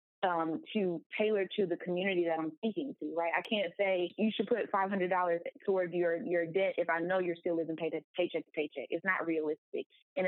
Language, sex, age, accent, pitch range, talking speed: English, female, 20-39, American, 165-200 Hz, 210 wpm